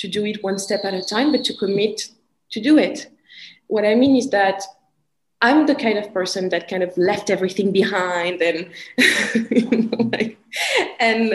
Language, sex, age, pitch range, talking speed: English, female, 20-39, 195-240 Hz, 170 wpm